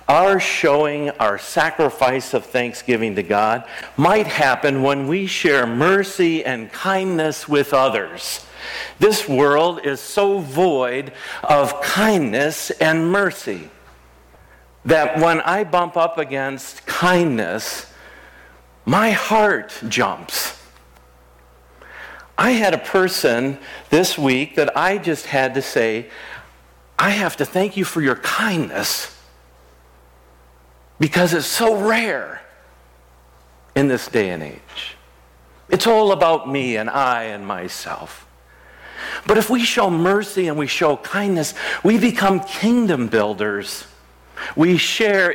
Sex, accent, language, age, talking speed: male, American, English, 50-69, 120 wpm